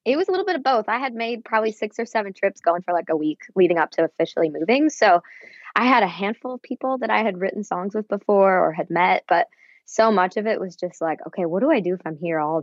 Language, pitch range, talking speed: English, 160-200 Hz, 280 wpm